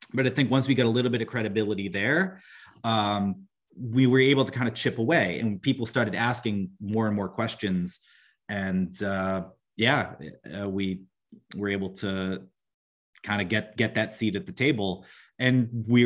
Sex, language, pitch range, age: male, English, 105-130 Hz, 30-49